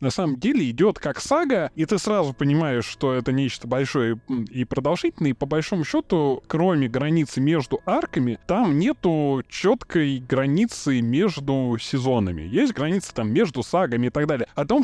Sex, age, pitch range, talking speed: male, 20-39, 120-165 Hz, 160 wpm